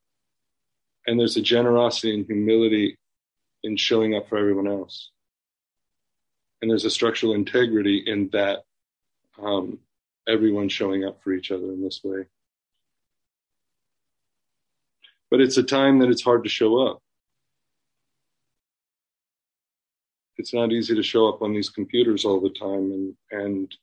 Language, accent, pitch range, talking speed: English, American, 100-135 Hz, 135 wpm